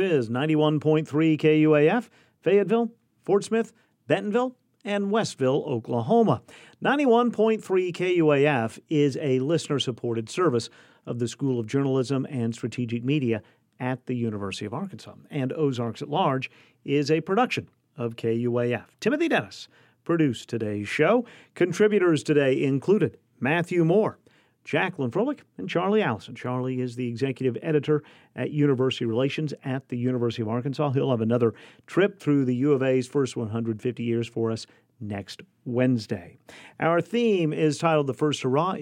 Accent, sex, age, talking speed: American, male, 50-69, 140 wpm